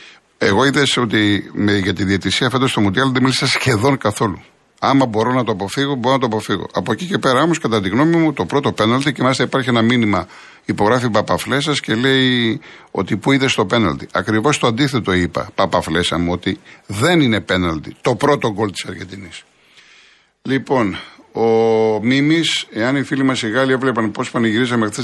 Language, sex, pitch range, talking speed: Greek, male, 105-135 Hz, 185 wpm